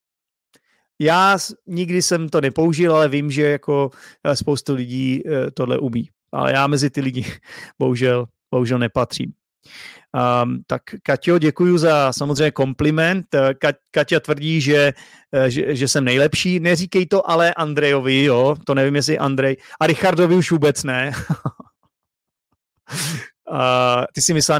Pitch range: 135-165 Hz